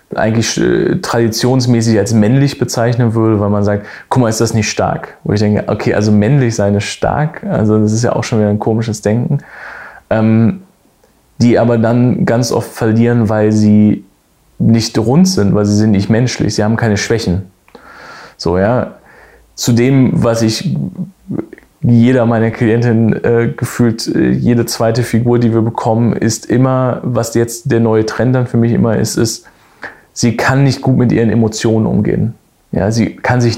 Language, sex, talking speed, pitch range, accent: German, male, 175 wpm, 105-120 Hz, German